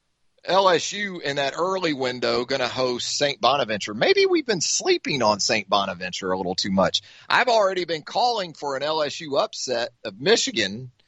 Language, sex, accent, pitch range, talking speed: English, male, American, 105-165 Hz, 170 wpm